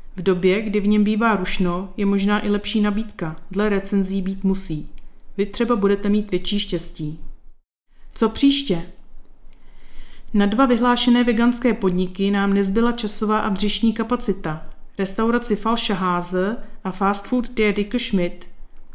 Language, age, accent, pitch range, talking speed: Czech, 40-59, native, 190-235 Hz, 135 wpm